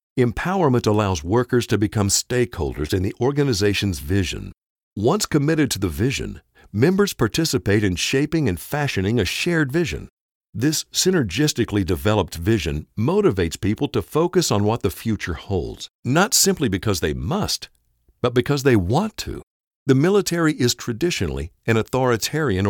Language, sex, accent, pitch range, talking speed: English, male, American, 100-140 Hz, 140 wpm